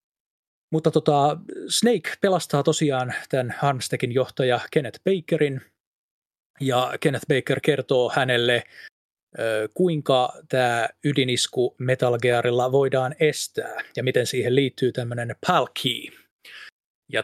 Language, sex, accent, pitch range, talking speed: Finnish, male, native, 125-160 Hz, 100 wpm